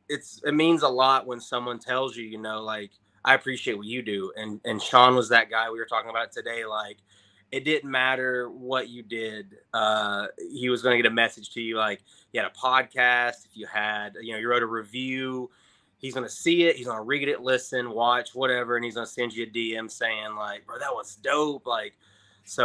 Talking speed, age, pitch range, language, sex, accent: 225 wpm, 20-39, 115-130 Hz, English, male, American